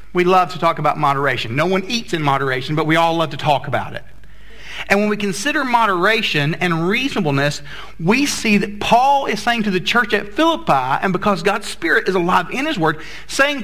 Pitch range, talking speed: 140-185 Hz, 205 wpm